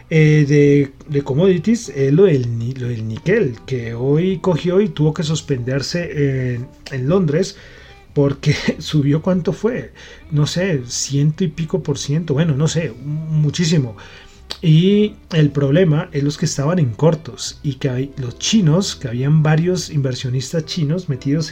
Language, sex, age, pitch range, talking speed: Spanish, male, 30-49, 130-155 Hz, 150 wpm